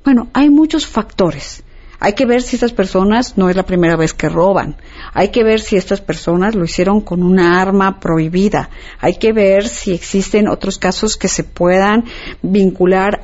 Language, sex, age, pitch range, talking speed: Spanish, female, 50-69, 180-230 Hz, 180 wpm